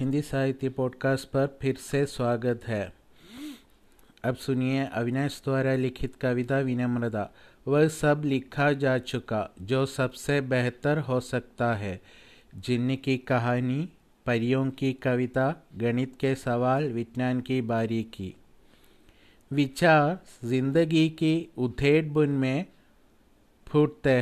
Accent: native